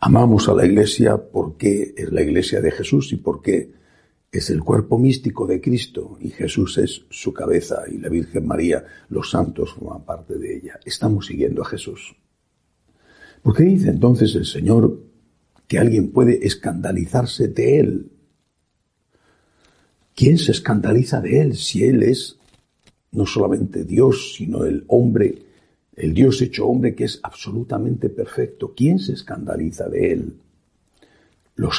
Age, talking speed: 60-79, 145 wpm